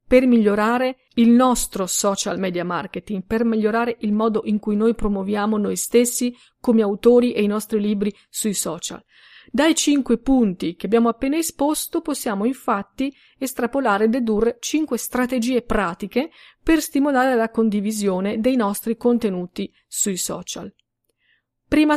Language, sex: Italian, female